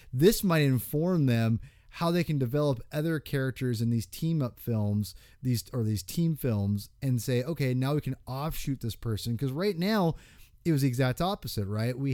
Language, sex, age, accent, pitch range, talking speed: English, male, 30-49, American, 115-155 Hz, 195 wpm